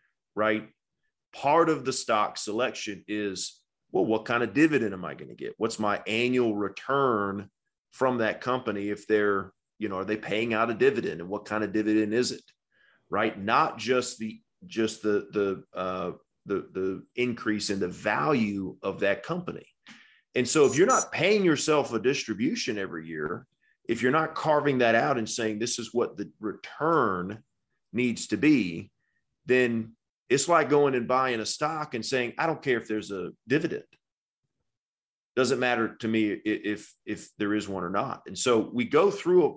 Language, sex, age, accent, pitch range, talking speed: English, male, 30-49, American, 105-130 Hz, 180 wpm